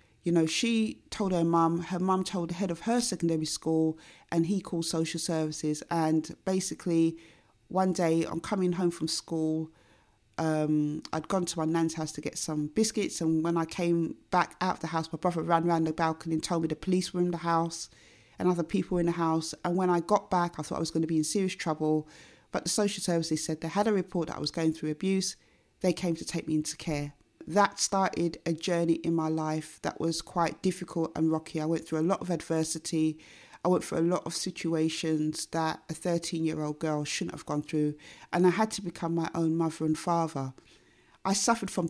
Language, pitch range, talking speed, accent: English, 160-180 Hz, 220 wpm, British